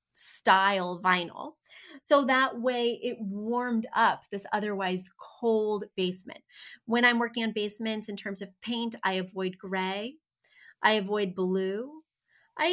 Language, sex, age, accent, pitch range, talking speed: English, female, 30-49, American, 190-250 Hz, 130 wpm